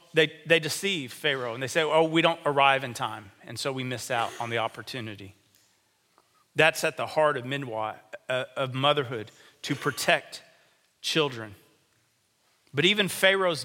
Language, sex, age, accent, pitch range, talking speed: English, male, 40-59, American, 130-165 Hz, 155 wpm